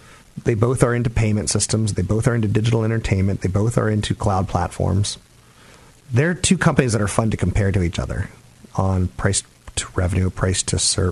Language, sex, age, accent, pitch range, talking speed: English, male, 40-59, American, 95-115 Hz, 180 wpm